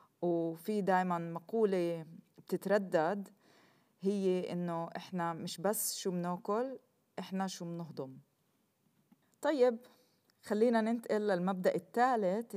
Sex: female